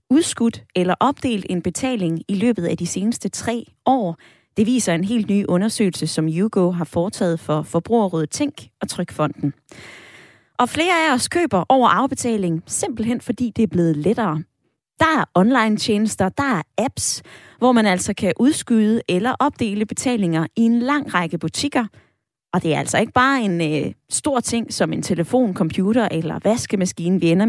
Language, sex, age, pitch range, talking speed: Danish, female, 20-39, 175-245 Hz, 170 wpm